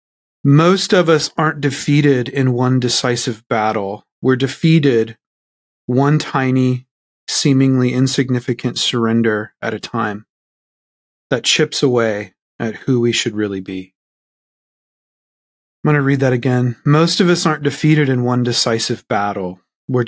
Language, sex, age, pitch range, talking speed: English, male, 30-49, 110-145 Hz, 130 wpm